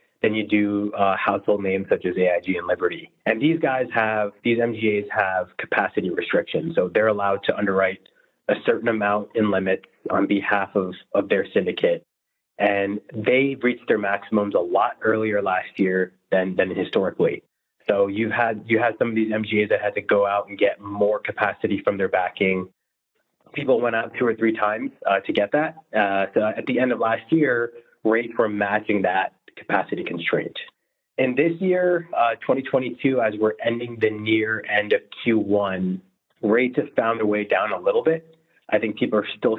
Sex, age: male, 20-39